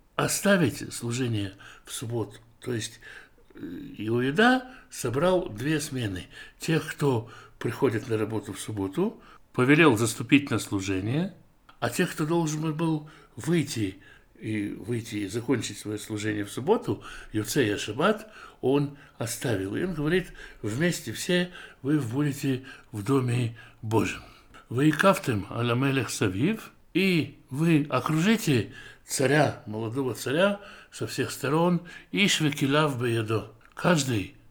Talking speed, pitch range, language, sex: 115 wpm, 115-155 Hz, Russian, male